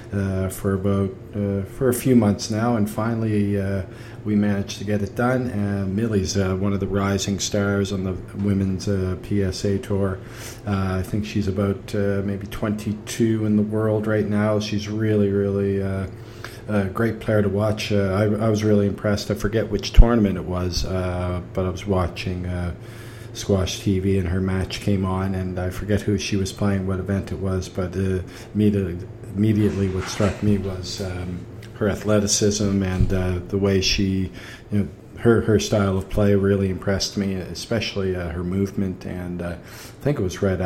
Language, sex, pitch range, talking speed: English, male, 95-105 Hz, 190 wpm